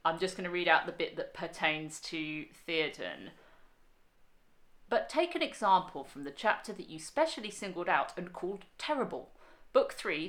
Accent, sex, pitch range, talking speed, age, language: British, female, 165-210 Hz, 170 wpm, 40-59, English